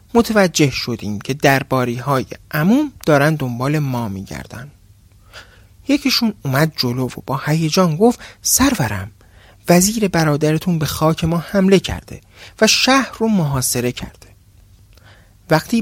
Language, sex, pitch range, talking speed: Persian, male, 120-185 Hz, 115 wpm